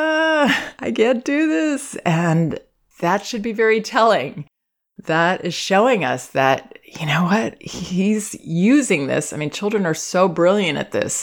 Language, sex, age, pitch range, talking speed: English, female, 30-49, 160-220 Hz, 155 wpm